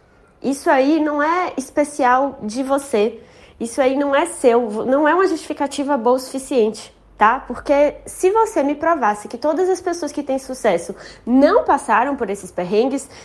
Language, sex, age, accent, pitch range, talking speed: Portuguese, female, 20-39, Brazilian, 240-295 Hz, 170 wpm